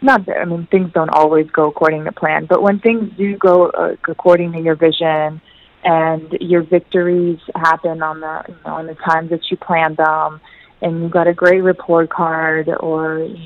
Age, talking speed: 20-39, 200 wpm